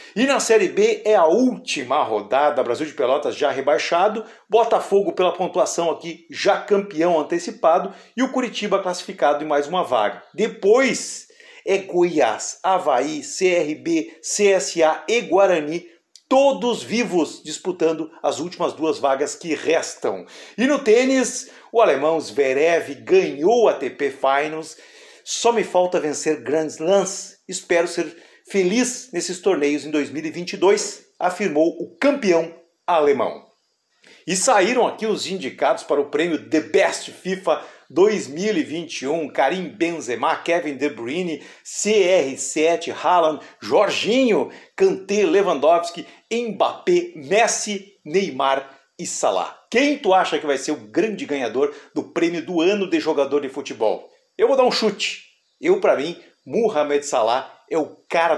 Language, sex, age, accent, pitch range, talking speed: Portuguese, male, 50-69, Brazilian, 160-240 Hz, 135 wpm